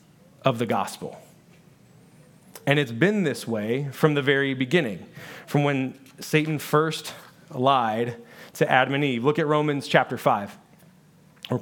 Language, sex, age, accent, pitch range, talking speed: English, male, 30-49, American, 130-160 Hz, 140 wpm